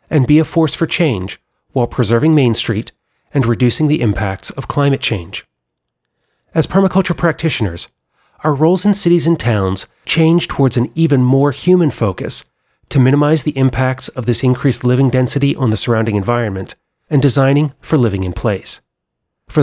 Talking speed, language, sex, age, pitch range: 160 wpm, English, male, 30-49, 110-145 Hz